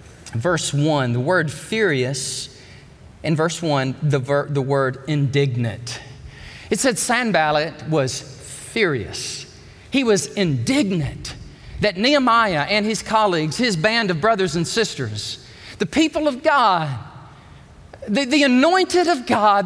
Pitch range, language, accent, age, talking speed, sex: 135-225 Hz, English, American, 40-59, 125 wpm, male